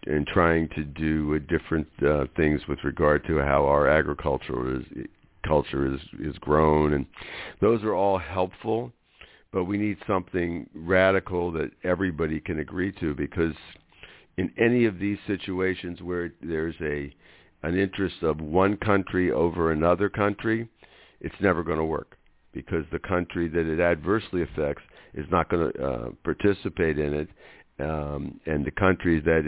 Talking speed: 155 wpm